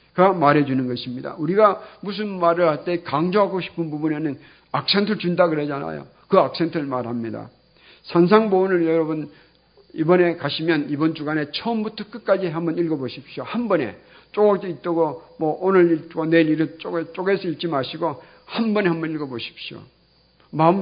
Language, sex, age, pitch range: Korean, male, 50-69, 150-185 Hz